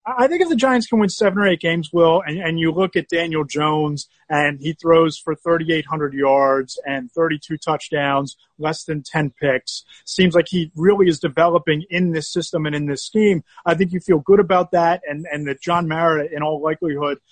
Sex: male